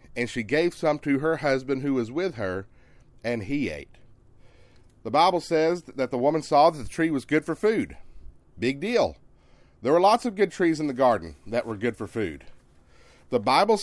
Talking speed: 200 wpm